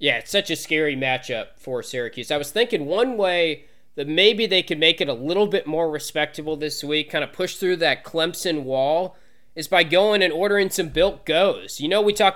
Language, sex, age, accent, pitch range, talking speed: English, male, 20-39, American, 130-170 Hz, 220 wpm